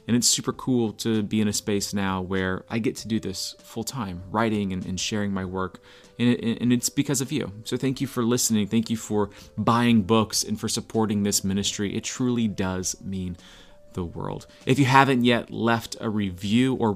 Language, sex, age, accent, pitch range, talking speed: English, male, 30-49, American, 100-120 Hz, 210 wpm